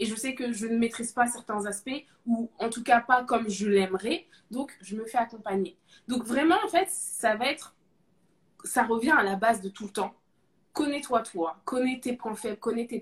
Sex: female